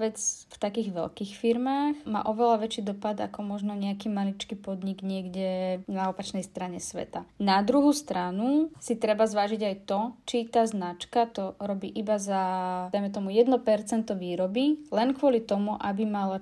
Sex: female